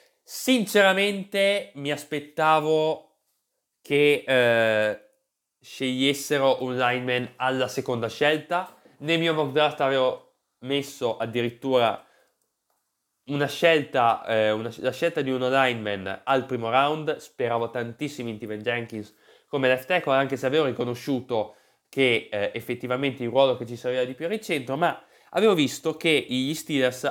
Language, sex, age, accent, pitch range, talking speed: Italian, male, 20-39, native, 120-150 Hz, 130 wpm